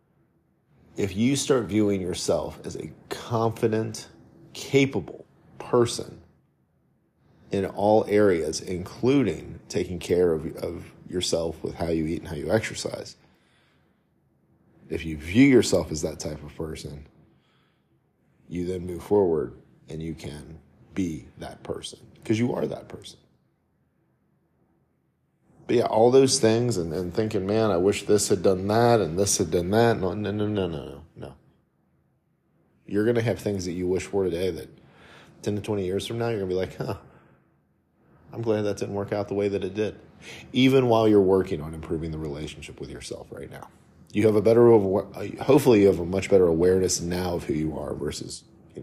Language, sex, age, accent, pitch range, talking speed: English, male, 40-59, American, 80-110 Hz, 175 wpm